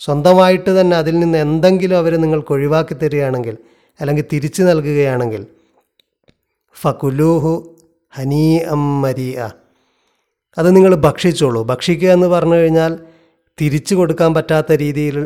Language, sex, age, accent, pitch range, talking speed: Malayalam, male, 30-49, native, 140-175 Hz, 95 wpm